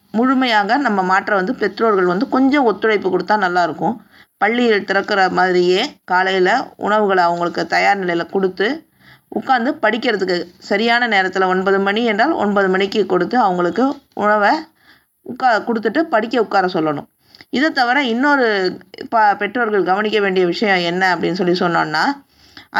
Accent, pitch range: native, 195-255 Hz